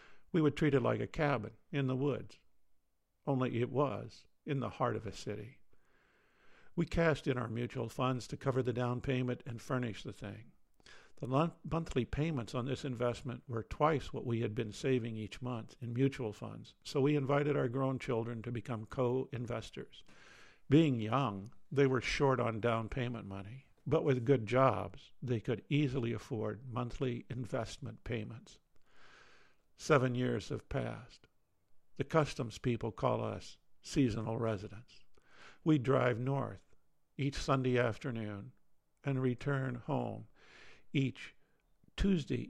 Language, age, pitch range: English, 50-69, 115-140 Hz